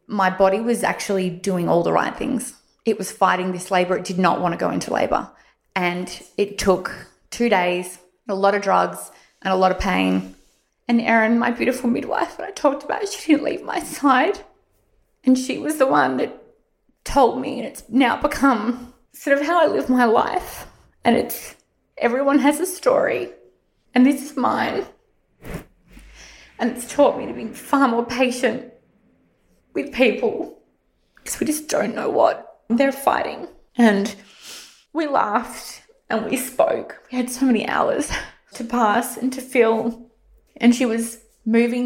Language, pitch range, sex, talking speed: English, 200-255 Hz, female, 170 wpm